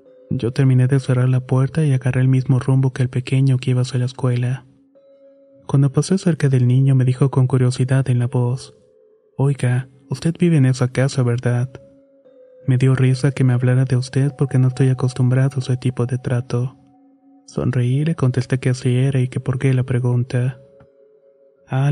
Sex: male